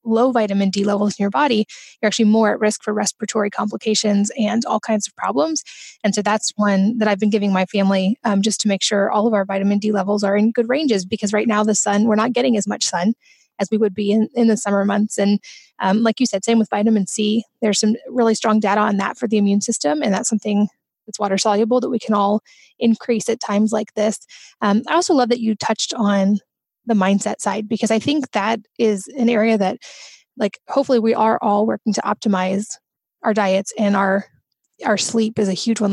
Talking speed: 230 wpm